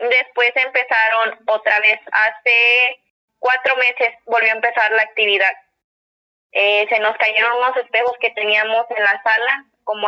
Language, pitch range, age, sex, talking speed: Spanish, 215-235 Hz, 20-39, female, 145 wpm